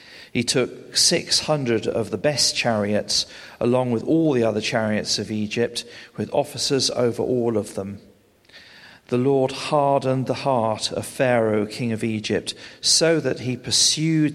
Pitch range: 115-145 Hz